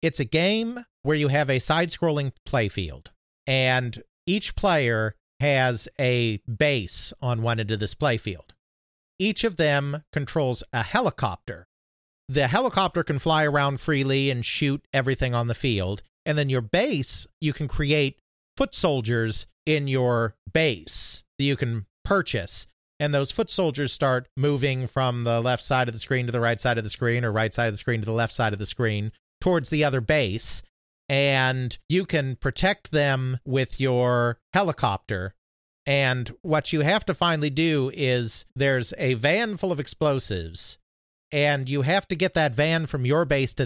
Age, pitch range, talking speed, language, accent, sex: 40-59, 110-150 Hz, 170 wpm, English, American, male